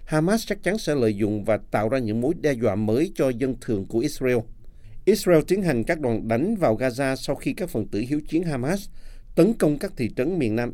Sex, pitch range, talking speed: male, 110-150 Hz, 235 wpm